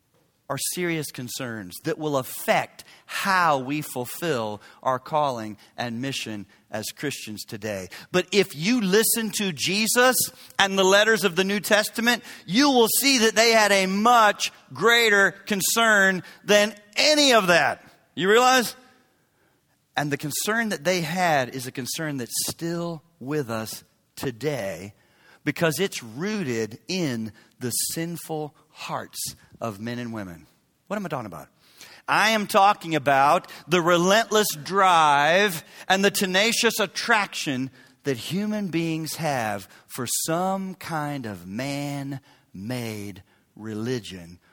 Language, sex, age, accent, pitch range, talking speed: English, male, 40-59, American, 125-200 Hz, 130 wpm